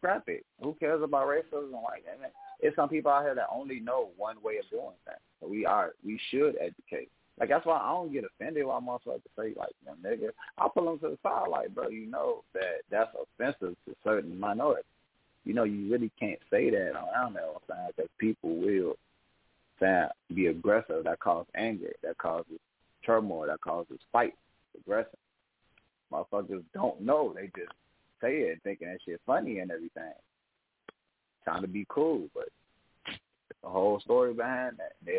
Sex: male